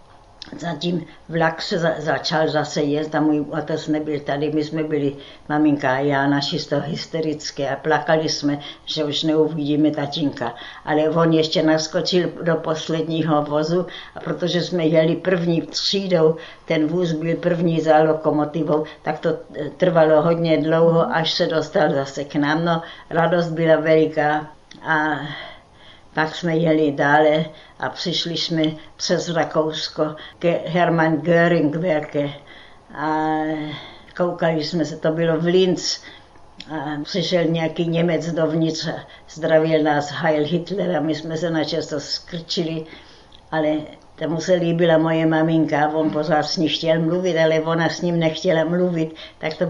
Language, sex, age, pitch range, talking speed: Czech, female, 60-79, 150-165 Hz, 145 wpm